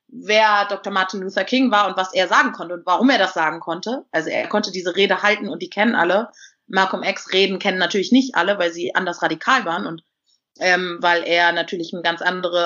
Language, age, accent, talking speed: German, 30-49, German, 225 wpm